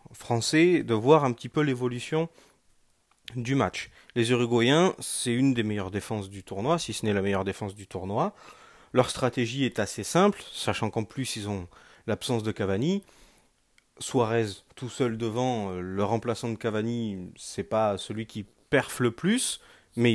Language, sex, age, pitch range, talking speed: French, male, 30-49, 110-140 Hz, 165 wpm